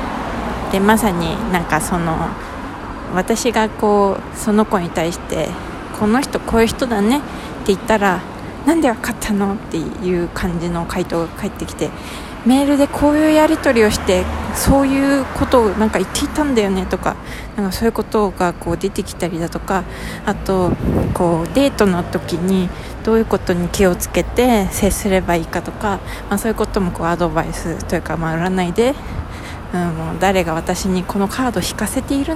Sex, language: female, Japanese